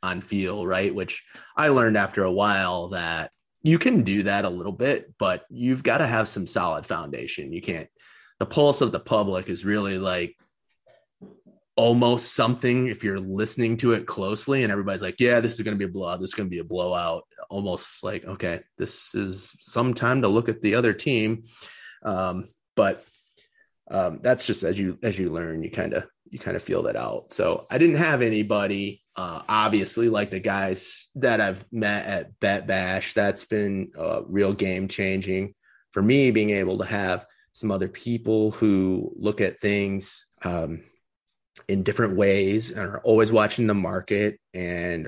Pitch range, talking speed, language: 95-115 Hz, 185 wpm, English